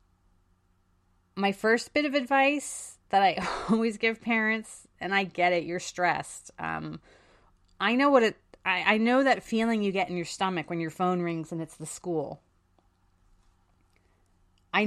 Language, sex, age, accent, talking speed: English, female, 30-49, American, 155 wpm